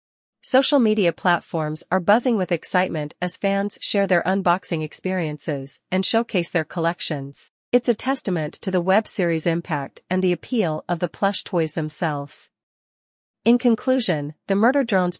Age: 40-59